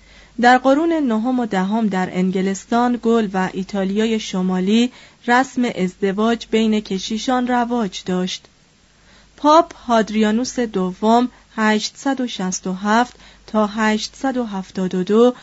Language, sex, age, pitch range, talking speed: Persian, female, 30-49, 200-250 Hz, 90 wpm